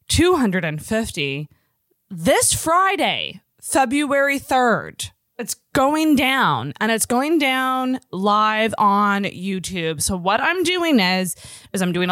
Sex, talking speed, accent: female, 115 wpm, American